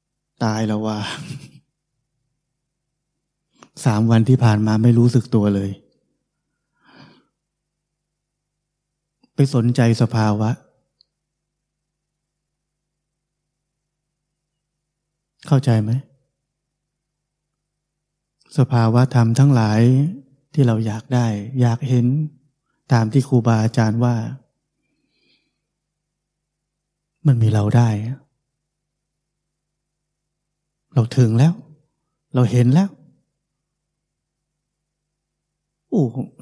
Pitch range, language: 125-155 Hz, Thai